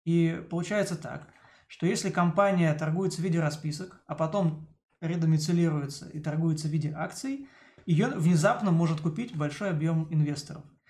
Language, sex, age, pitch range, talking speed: Turkish, male, 20-39, 150-175 Hz, 140 wpm